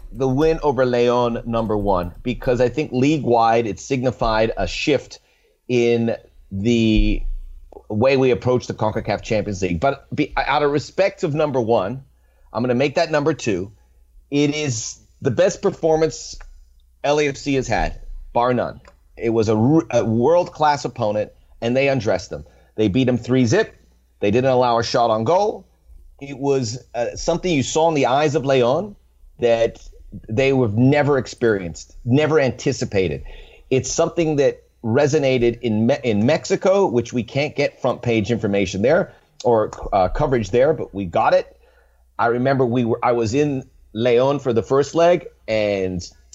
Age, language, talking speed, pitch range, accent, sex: 30-49, English, 160 wpm, 110-140 Hz, American, male